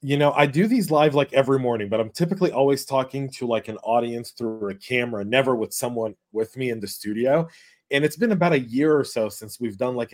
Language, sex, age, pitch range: English, male, 30-49, 115-160 Hz